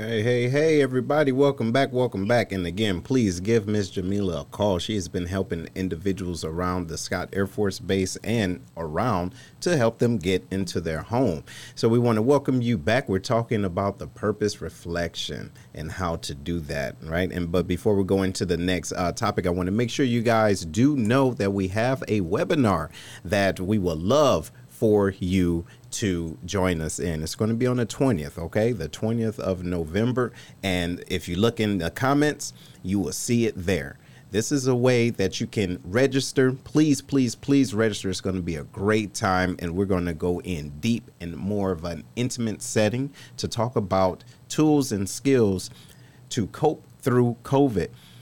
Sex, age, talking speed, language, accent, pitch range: male, 40-59, 195 wpm, English, American, 90-125 Hz